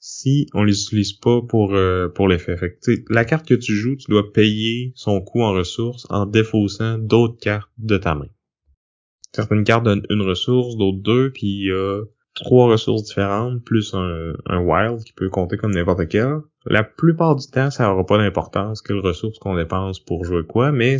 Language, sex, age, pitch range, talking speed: French, male, 20-39, 95-115 Hz, 190 wpm